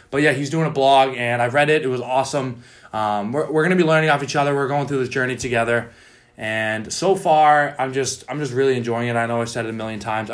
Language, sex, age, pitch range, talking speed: English, male, 20-39, 115-145 Hz, 265 wpm